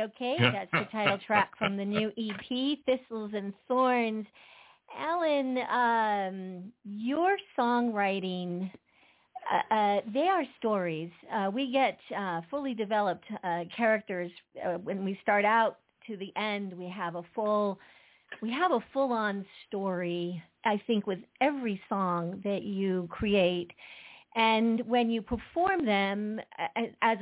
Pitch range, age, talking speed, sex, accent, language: 190-235 Hz, 50-69, 130 wpm, female, American, English